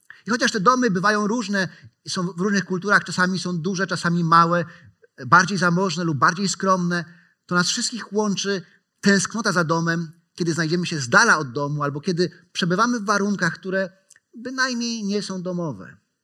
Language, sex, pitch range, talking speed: Polish, male, 165-200 Hz, 165 wpm